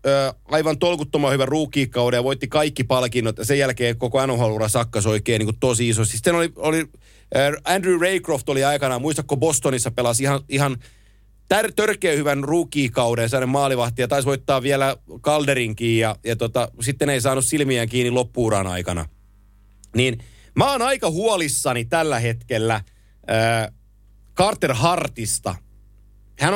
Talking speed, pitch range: 140 wpm, 115-160 Hz